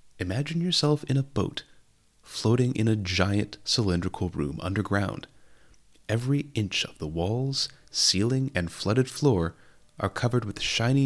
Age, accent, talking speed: 30-49, American, 135 wpm